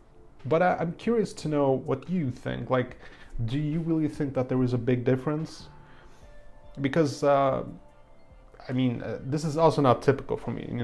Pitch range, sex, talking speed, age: 120-140 Hz, male, 170 wpm, 30-49